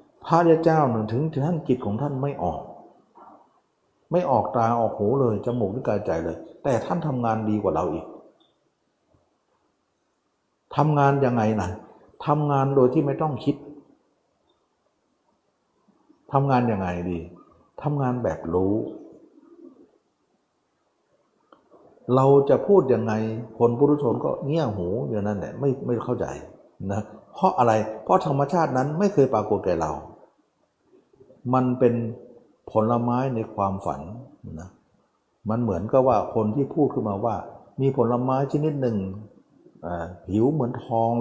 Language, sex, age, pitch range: Thai, male, 60-79, 105-140 Hz